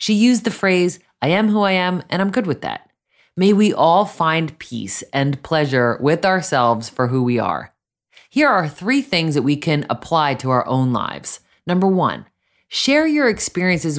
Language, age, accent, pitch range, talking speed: English, 30-49, American, 130-190 Hz, 190 wpm